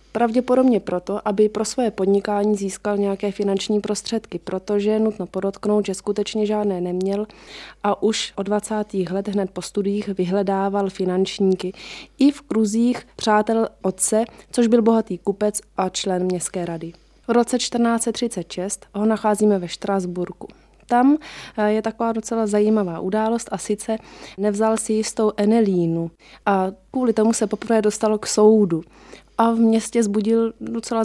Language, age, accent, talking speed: Czech, 20-39, native, 140 wpm